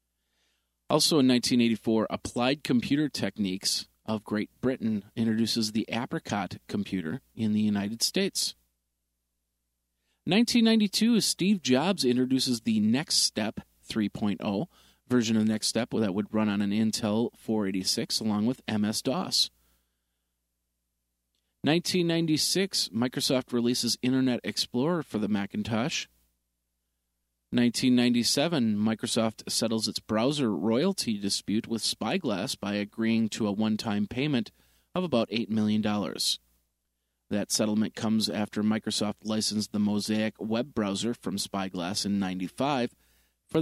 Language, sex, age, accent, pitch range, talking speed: English, male, 30-49, American, 95-120 Hz, 110 wpm